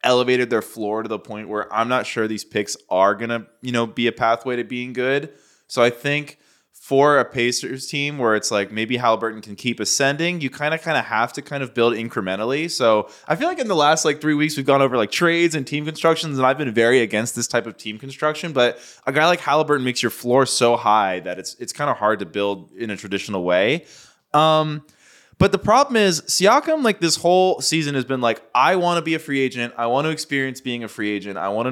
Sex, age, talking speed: male, 20-39, 245 wpm